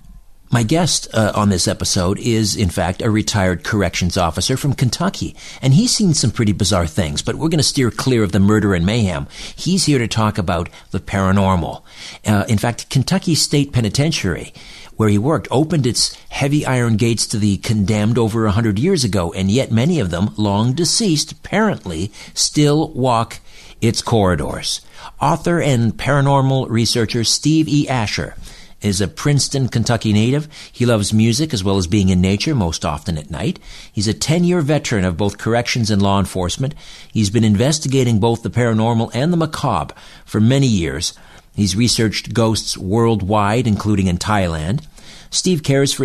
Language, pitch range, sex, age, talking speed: English, 100-130 Hz, male, 60-79, 170 wpm